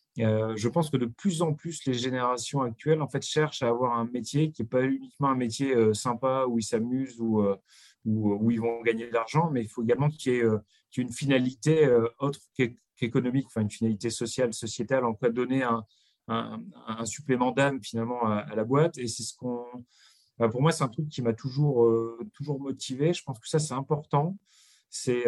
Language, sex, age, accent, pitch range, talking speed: French, male, 30-49, French, 115-140 Hz, 225 wpm